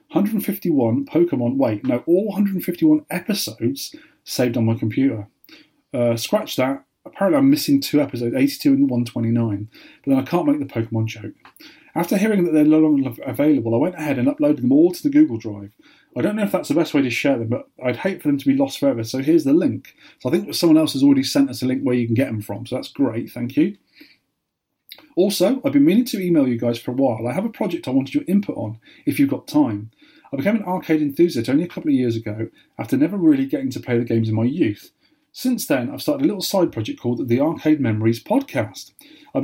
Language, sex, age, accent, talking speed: English, male, 30-49, British, 235 wpm